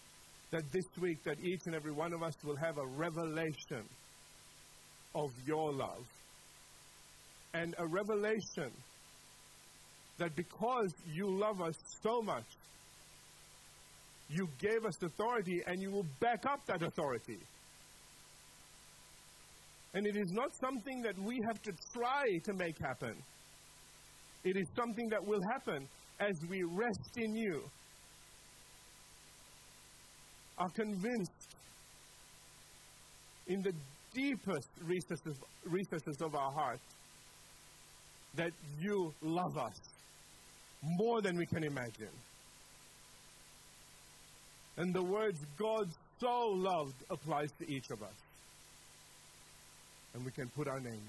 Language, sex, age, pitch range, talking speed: English, male, 50-69, 145-205 Hz, 115 wpm